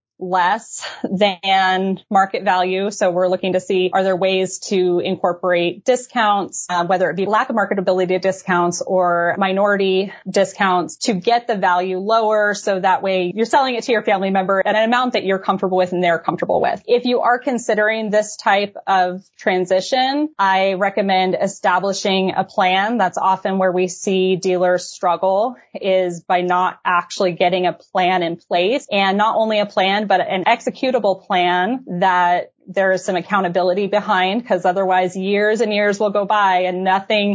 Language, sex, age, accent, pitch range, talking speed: English, female, 20-39, American, 185-210 Hz, 170 wpm